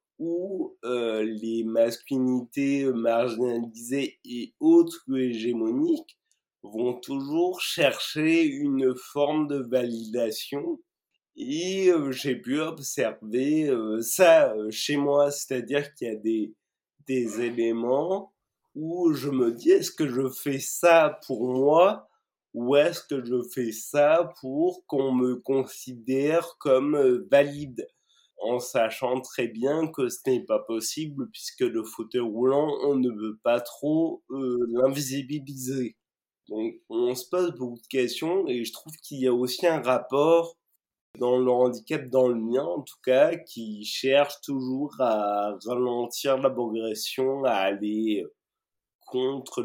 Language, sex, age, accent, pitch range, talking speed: French, male, 20-39, French, 120-160 Hz, 135 wpm